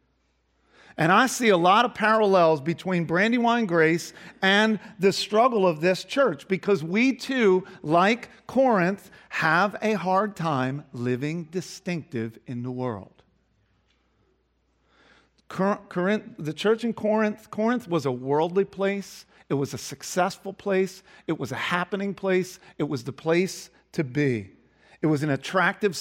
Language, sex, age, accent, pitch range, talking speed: English, male, 50-69, American, 135-205 Hz, 135 wpm